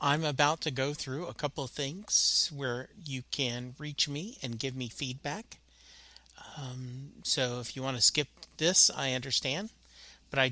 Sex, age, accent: male, 40-59, American